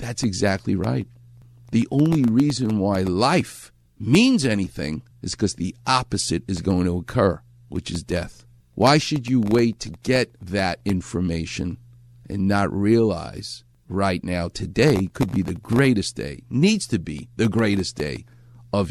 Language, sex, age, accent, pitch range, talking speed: English, male, 50-69, American, 100-160 Hz, 150 wpm